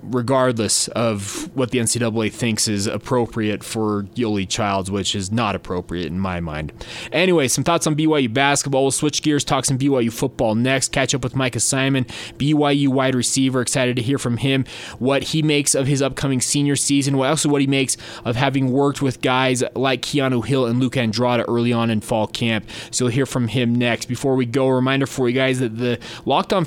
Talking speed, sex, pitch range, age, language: 205 wpm, male, 120-145 Hz, 20-39, English